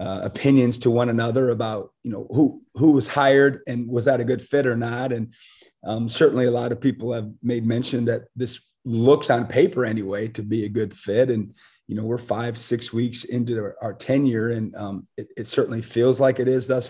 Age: 30-49